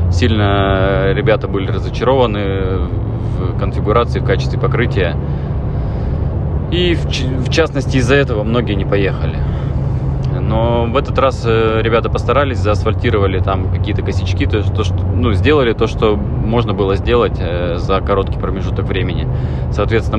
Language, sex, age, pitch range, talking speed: Russian, male, 20-39, 90-110 Hz, 115 wpm